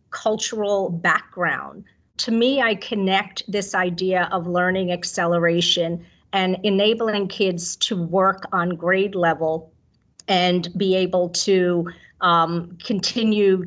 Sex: female